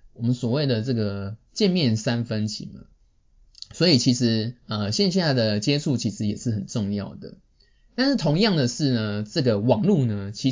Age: 20-39